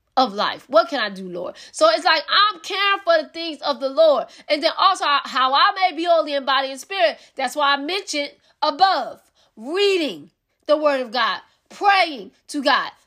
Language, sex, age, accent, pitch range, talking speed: English, female, 20-39, American, 290-375 Hz, 195 wpm